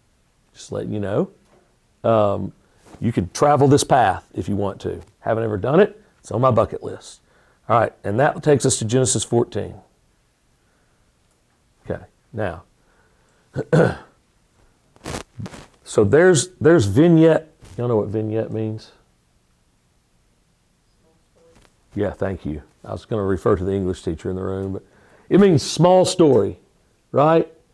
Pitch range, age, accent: 95-135 Hz, 50-69, American